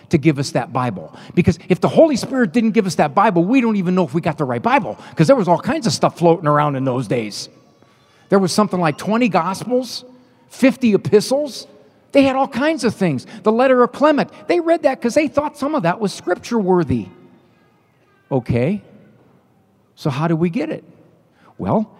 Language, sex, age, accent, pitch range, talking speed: German, male, 50-69, American, 135-210 Hz, 205 wpm